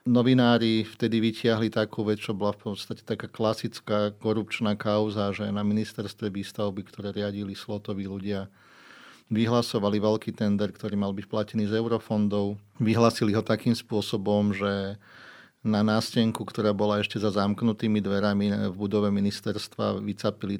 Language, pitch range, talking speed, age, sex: Slovak, 100-110 Hz, 135 wpm, 40-59, male